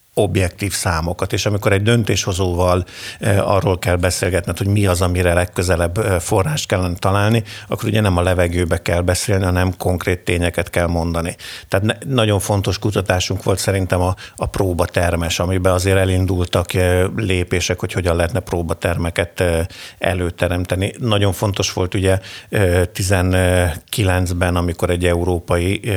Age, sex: 50-69, male